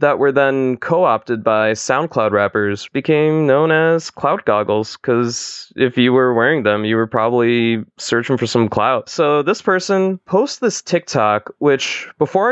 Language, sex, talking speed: English, male, 160 wpm